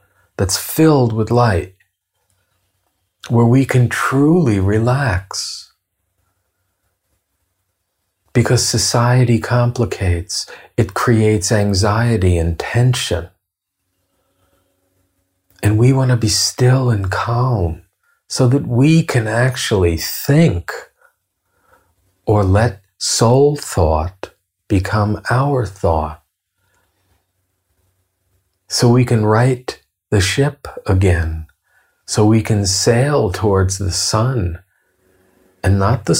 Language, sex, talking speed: English, male, 90 wpm